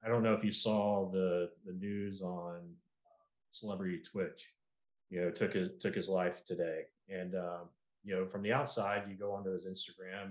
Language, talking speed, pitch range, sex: English, 190 wpm, 90-110 Hz, male